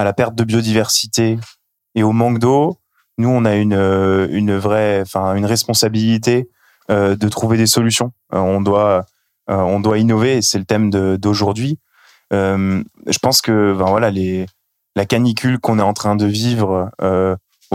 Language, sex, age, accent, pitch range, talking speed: French, male, 20-39, French, 100-115 Hz, 170 wpm